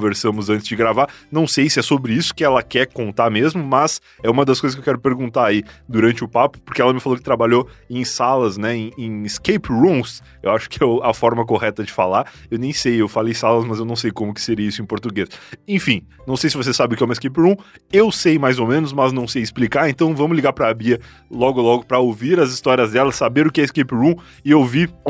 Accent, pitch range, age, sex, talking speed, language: Brazilian, 115-160 Hz, 20-39, male, 260 wpm, Portuguese